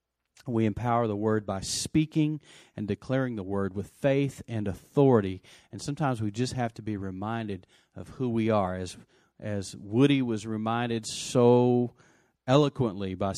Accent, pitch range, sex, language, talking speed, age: American, 100-135 Hz, male, English, 150 wpm, 40-59